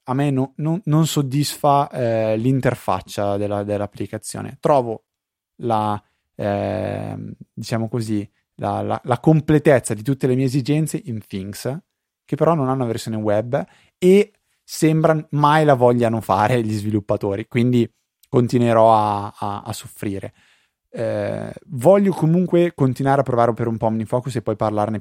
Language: Italian